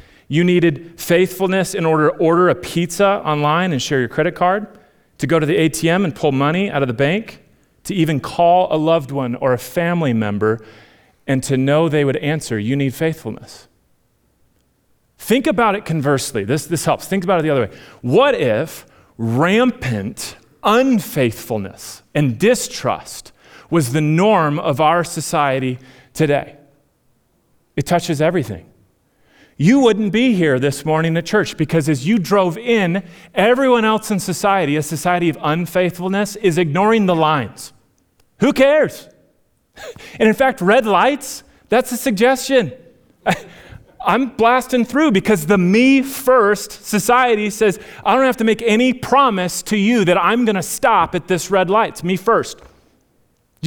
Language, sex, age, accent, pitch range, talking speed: English, male, 30-49, American, 150-215 Hz, 160 wpm